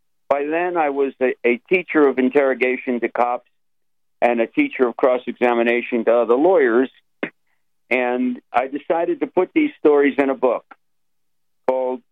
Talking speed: 145 wpm